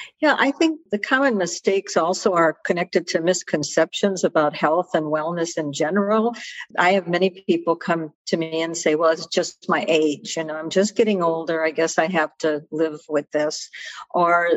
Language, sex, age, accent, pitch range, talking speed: English, female, 60-79, American, 160-190 Hz, 190 wpm